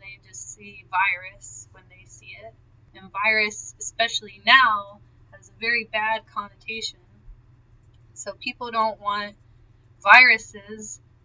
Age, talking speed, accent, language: 20-39, 105 wpm, American, English